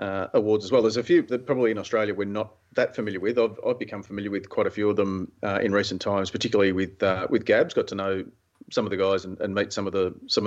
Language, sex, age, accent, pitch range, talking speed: English, male, 30-49, Australian, 95-110 Hz, 280 wpm